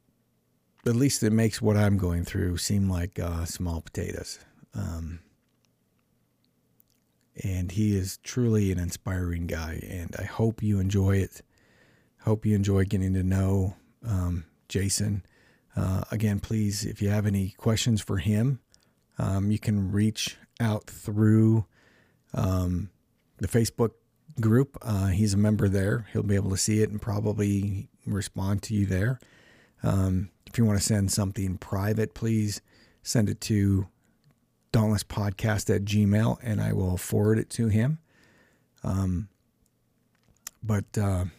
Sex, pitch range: male, 95-110 Hz